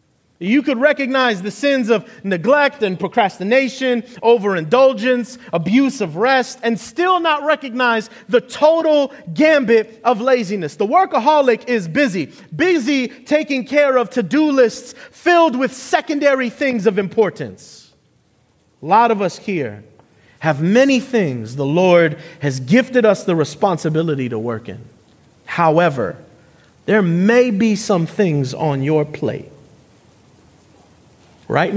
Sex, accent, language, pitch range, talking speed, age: male, American, English, 160-255 Hz, 125 wpm, 30-49